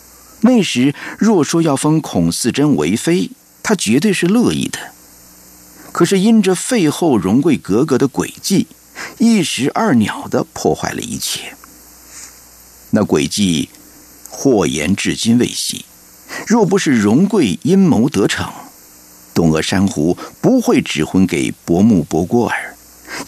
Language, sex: Chinese, male